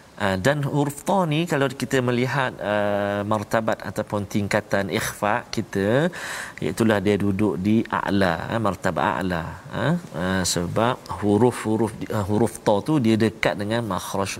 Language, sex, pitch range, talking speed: Malayalam, male, 100-150 Hz, 140 wpm